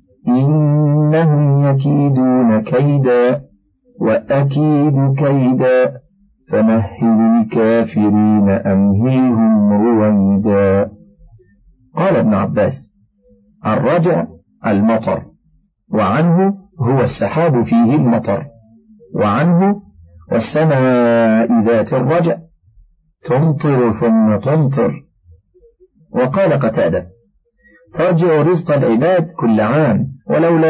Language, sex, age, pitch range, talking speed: Arabic, male, 50-69, 115-155 Hz, 65 wpm